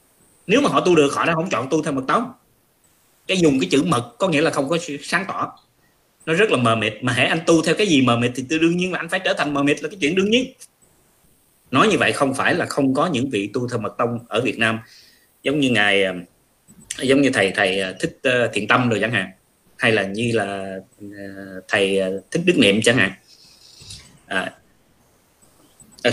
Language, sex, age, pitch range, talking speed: Vietnamese, male, 20-39, 100-140 Hz, 220 wpm